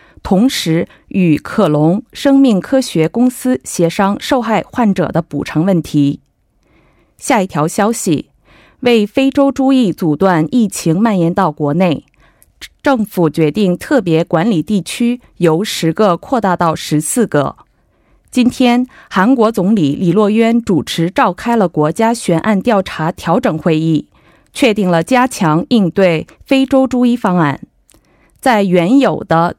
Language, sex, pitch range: Korean, female, 165-245 Hz